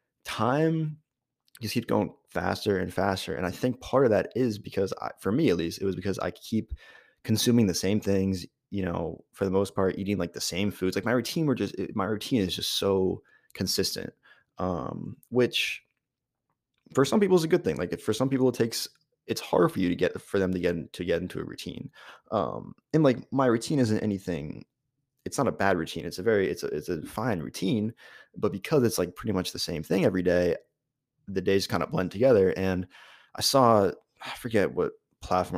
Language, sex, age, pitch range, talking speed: English, male, 20-39, 90-115 Hz, 210 wpm